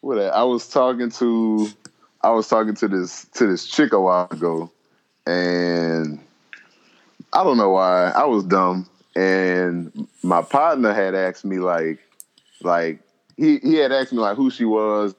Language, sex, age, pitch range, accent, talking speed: English, male, 20-39, 95-125 Hz, American, 160 wpm